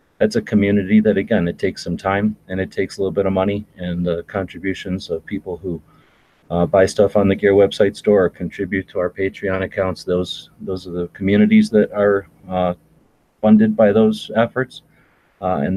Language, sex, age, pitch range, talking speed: English, male, 30-49, 90-100 Hz, 195 wpm